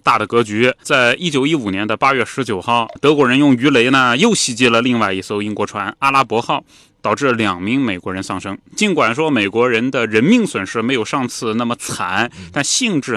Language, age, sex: Chinese, 20-39, male